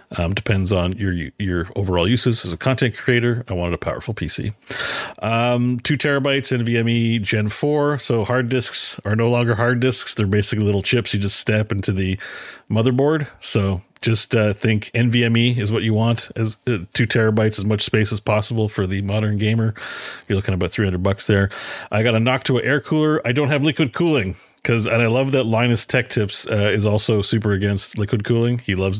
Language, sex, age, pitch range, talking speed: English, male, 40-59, 100-125 Hz, 200 wpm